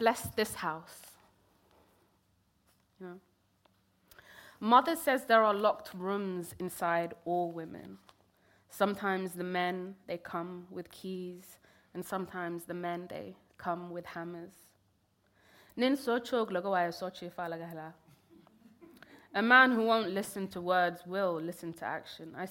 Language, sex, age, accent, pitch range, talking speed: English, female, 20-39, British, 165-190 Hz, 105 wpm